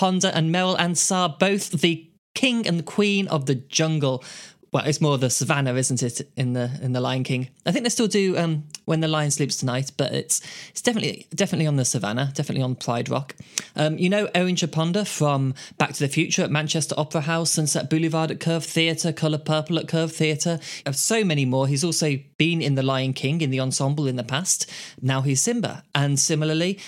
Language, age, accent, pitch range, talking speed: English, 20-39, British, 135-170 Hz, 215 wpm